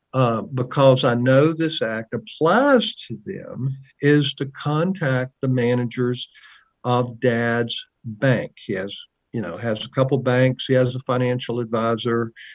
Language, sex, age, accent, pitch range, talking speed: English, male, 50-69, American, 120-150 Hz, 145 wpm